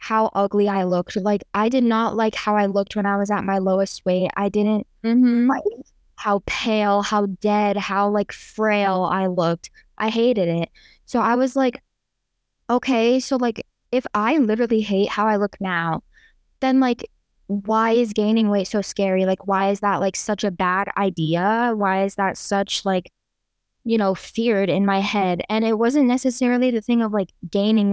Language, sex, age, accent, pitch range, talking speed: English, female, 10-29, American, 195-230 Hz, 185 wpm